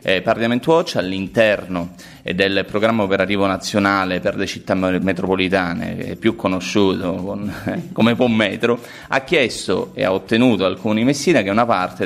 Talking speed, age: 145 wpm, 30-49